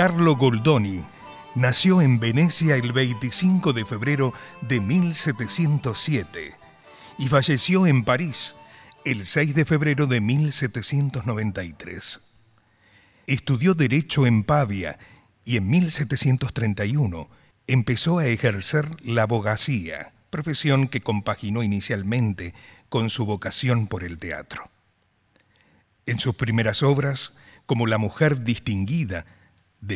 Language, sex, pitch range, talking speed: Spanish, male, 110-140 Hz, 105 wpm